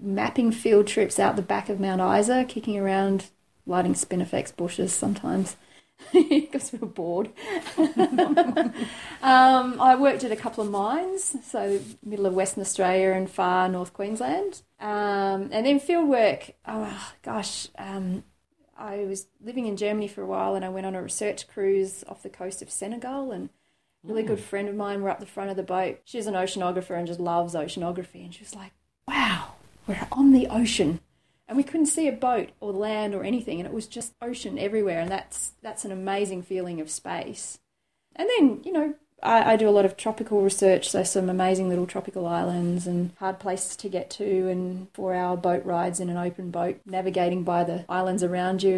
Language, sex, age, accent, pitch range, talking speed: English, female, 30-49, Australian, 185-230 Hz, 190 wpm